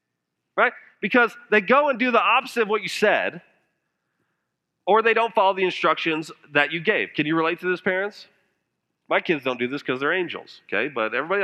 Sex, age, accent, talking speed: male, 40-59, American, 200 wpm